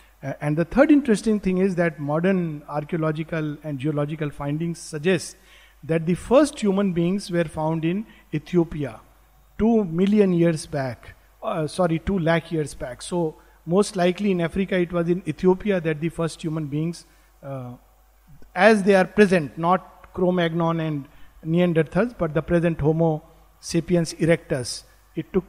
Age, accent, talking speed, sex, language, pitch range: 50-69, Indian, 150 wpm, male, English, 160-205 Hz